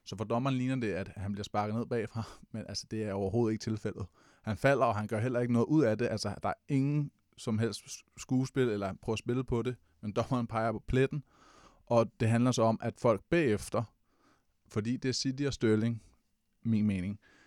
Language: Danish